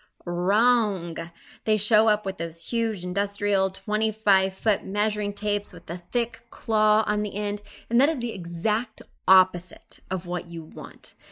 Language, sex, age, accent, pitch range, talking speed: English, female, 20-39, American, 190-230 Hz, 150 wpm